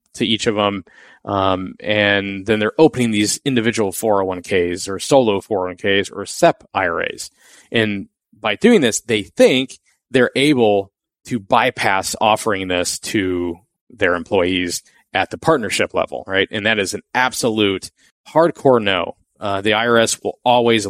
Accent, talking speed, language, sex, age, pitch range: American, 145 wpm, English, male, 20-39, 100-120 Hz